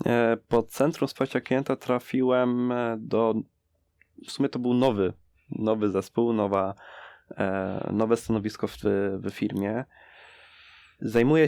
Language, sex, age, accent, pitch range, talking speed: Polish, male, 20-39, native, 100-115 Hz, 105 wpm